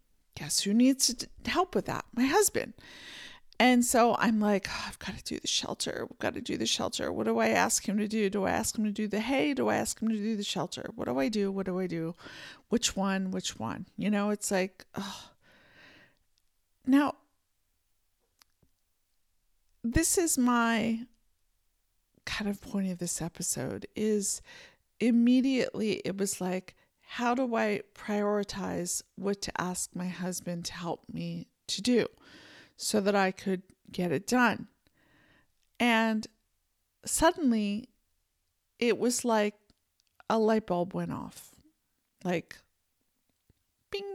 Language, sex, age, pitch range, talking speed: English, female, 50-69, 185-240 Hz, 150 wpm